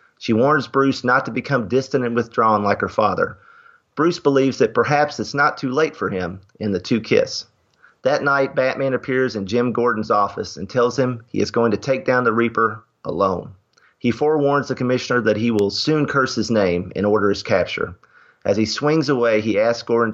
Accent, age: American, 40-59